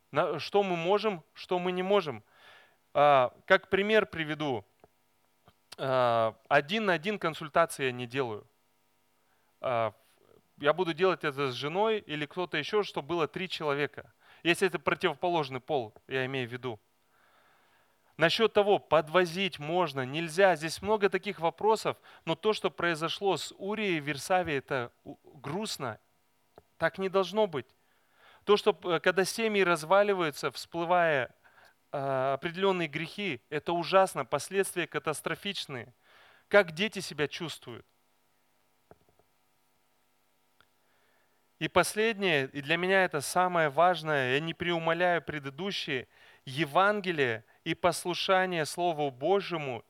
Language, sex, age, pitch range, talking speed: Russian, male, 30-49, 145-190 Hz, 115 wpm